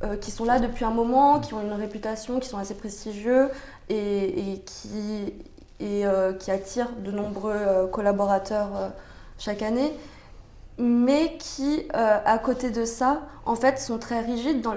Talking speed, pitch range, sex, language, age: 150 wpm, 200-240 Hz, female, French, 20-39